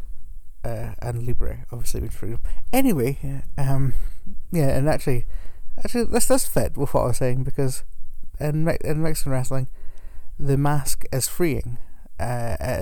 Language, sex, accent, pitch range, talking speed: English, male, British, 95-140 Hz, 145 wpm